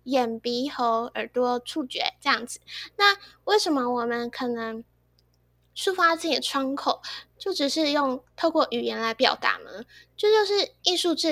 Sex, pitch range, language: female, 240-320 Hz, Chinese